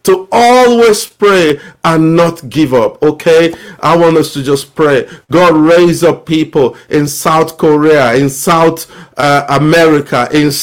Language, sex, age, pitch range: English, male, 50-69, 150-175 Hz